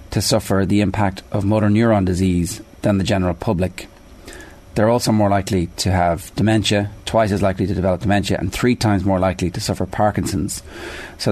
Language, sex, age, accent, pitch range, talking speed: English, male, 30-49, Irish, 90-105 Hz, 180 wpm